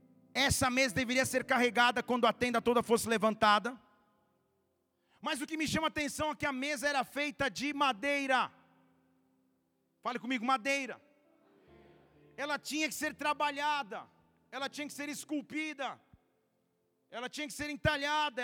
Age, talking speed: 40-59, 145 wpm